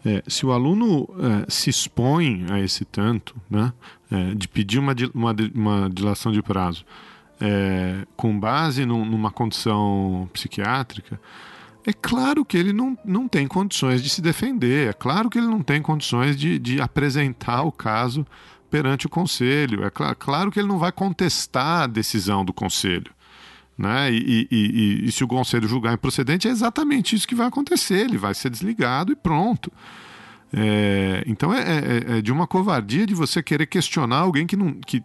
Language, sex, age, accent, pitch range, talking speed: Portuguese, male, 40-59, Brazilian, 105-160 Hz, 170 wpm